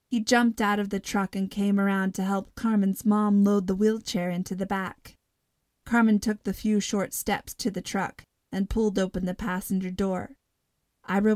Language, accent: English, American